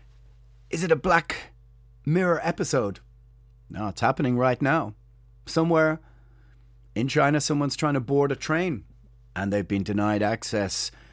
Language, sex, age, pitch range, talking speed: English, male, 30-49, 120-150 Hz, 135 wpm